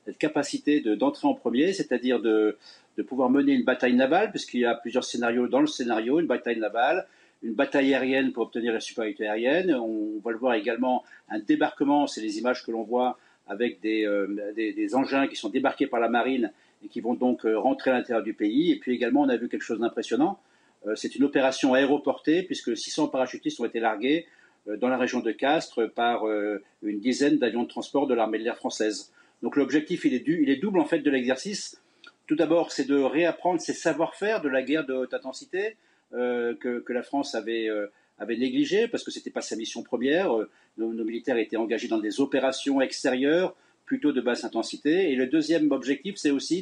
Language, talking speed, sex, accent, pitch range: French, 215 wpm, male, French, 120-170 Hz